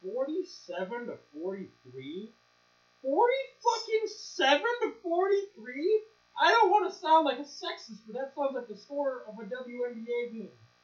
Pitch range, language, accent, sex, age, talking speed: 180-280 Hz, English, American, male, 30-49, 145 wpm